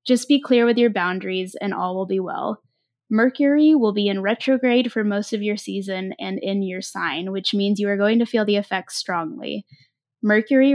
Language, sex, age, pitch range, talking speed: English, female, 20-39, 200-230 Hz, 200 wpm